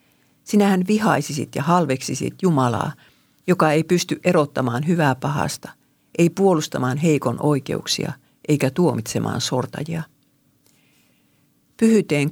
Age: 50-69